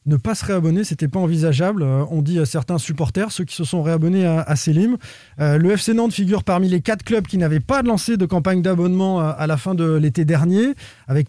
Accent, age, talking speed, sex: French, 20-39, 235 wpm, male